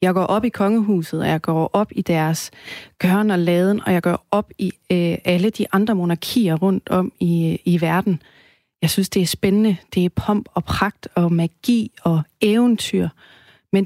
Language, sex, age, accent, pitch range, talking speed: Danish, female, 30-49, native, 170-205 Hz, 190 wpm